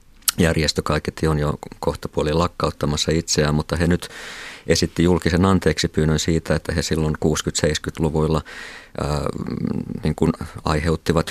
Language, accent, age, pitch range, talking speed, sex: Finnish, native, 50-69, 75-85 Hz, 110 wpm, male